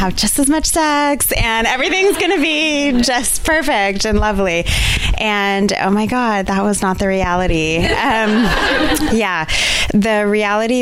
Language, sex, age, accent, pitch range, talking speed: English, female, 20-39, American, 145-180 Hz, 145 wpm